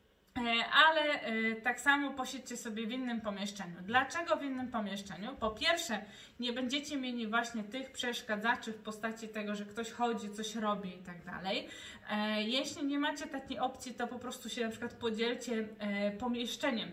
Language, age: Polish, 20-39